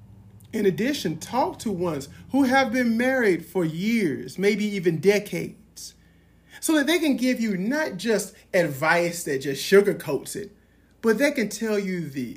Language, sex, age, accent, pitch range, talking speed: English, male, 40-59, American, 135-210 Hz, 160 wpm